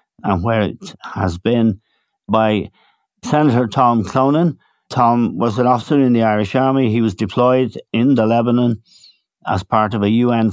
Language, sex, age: English, male, 60-79